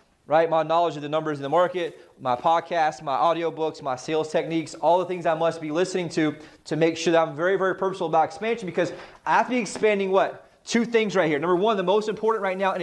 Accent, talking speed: American, 250 wpm